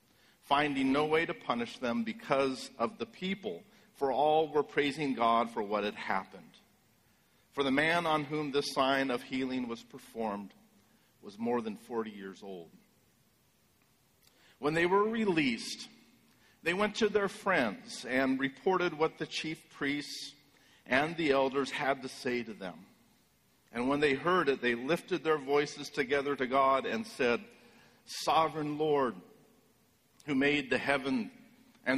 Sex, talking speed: male, 150 wpm